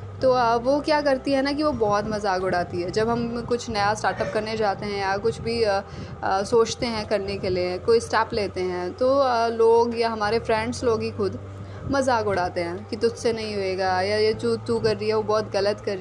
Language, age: Hindi, 20-39